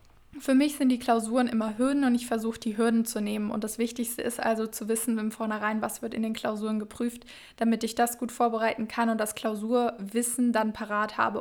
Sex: female